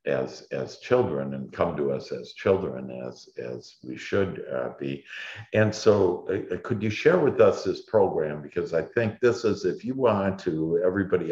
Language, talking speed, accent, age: English, 185 wpm, American, 60-79